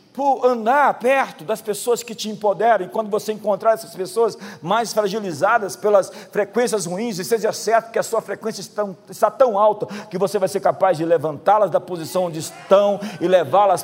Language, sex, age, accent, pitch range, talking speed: Portuguese, male, 50-69, Brazilian, 220-290 Hz, 180 wpm